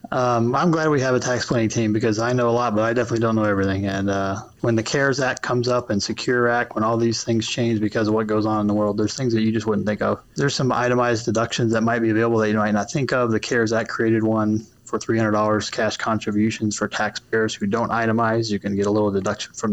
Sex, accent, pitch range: male, American, 105-120 Hz